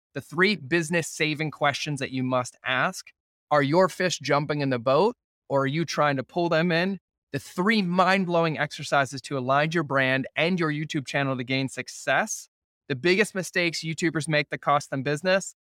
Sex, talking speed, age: male, 180 wpm, 20-39